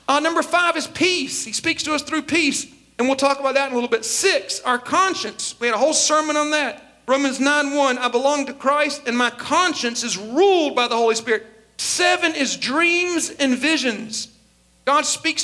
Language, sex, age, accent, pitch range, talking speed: English, male, 40-59, American, 245-305 Hz, 200 wpm